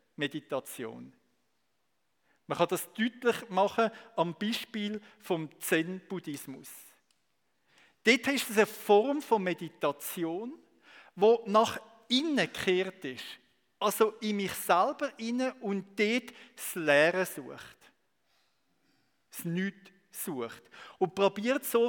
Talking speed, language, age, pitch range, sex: 105 wpm, German, 50-69, 185-235 Hz, male